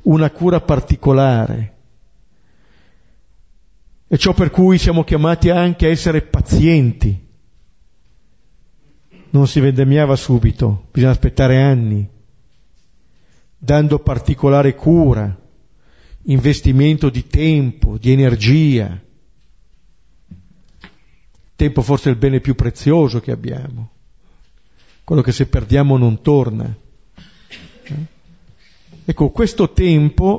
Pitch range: 120-150 Hz